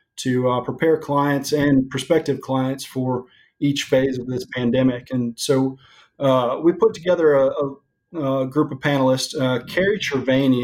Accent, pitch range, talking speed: American, 125-145 Hz, 150 wpm